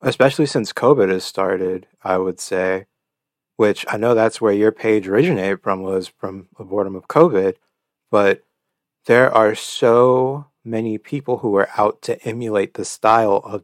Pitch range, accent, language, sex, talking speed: 100-120 Hz, American, English, male, 165 wpm